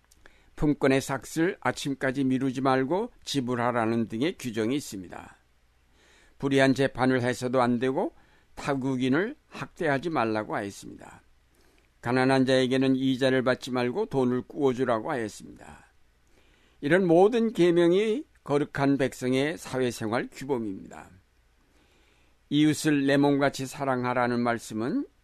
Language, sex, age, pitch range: Korean, male, 60-79, 115-145 Hz